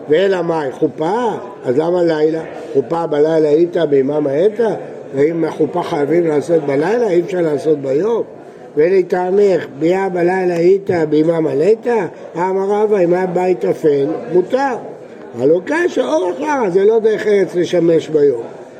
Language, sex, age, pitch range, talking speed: Hebrew, male, 60-79, 160-225 Hz, 130 wpm